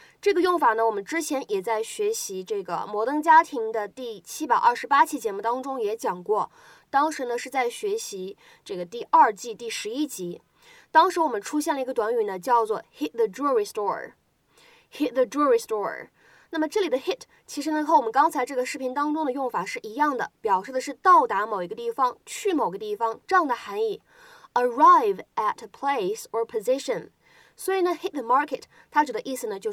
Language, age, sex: Chinese, 20-39, female